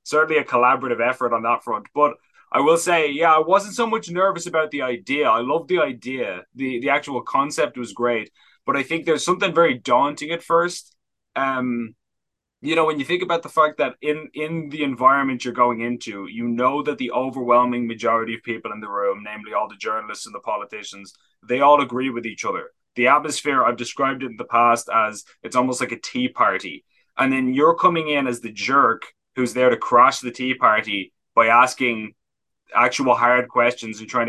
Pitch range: 120-150 Hz